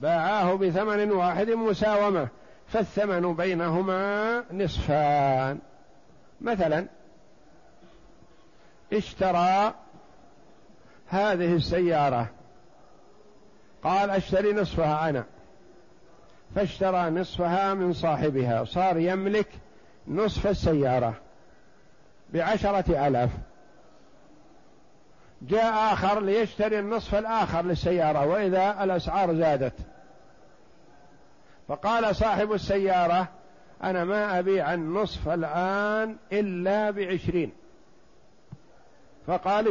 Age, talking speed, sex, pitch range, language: 60-79, 70 wpm, male, 175-210 Hz, Arabic